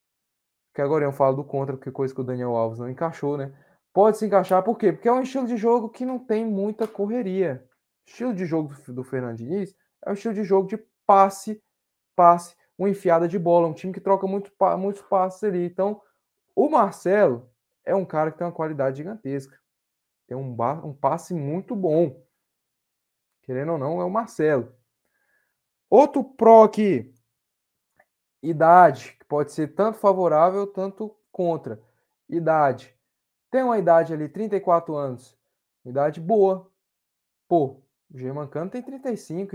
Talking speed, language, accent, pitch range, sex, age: 165 wpm, Portuguese, Brazilian, 140-215 Hz, male, 20-39